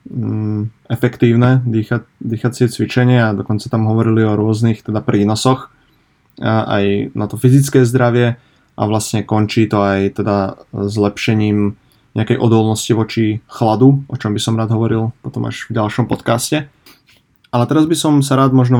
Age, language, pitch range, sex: 20-39, Slovak, 110-130 Hz, male